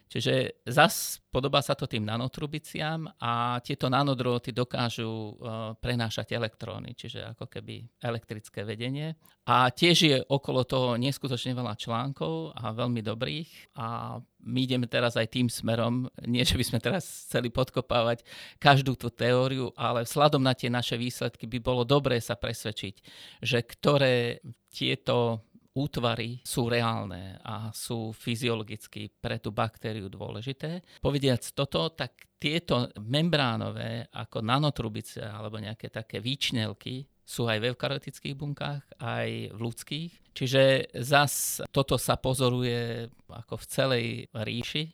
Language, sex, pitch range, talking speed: Slovak, male, 115-130 Hz, 135 wpm